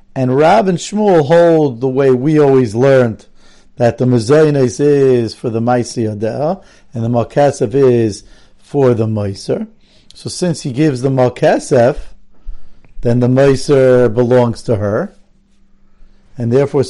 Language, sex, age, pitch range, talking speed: English, male, 50-69, 120-155 Hz, 135 wpm